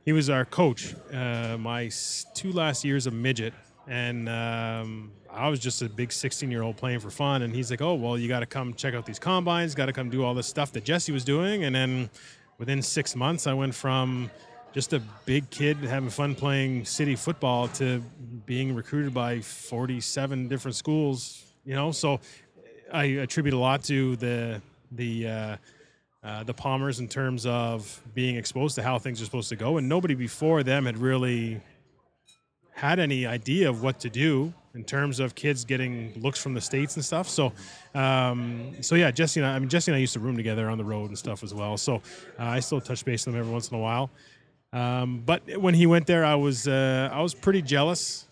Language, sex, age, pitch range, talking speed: English, male, 20-39, 120-145 Hz, 210 wpm